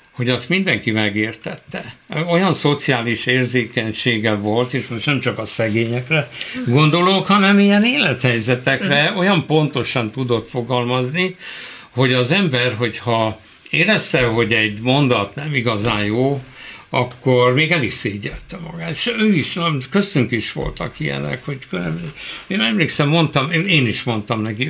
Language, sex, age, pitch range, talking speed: Hungarian, male, 60-79, 115-155 Hz, 130 wpm